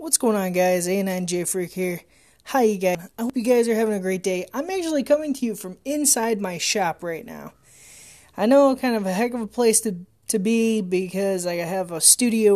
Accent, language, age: American, English, 20-39